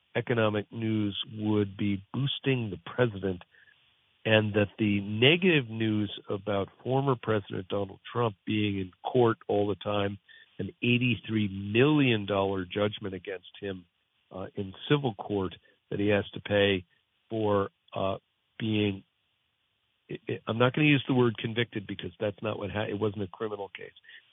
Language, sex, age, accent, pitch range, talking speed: English, male, 50-69, American, 100-120 Hz, 150 wpm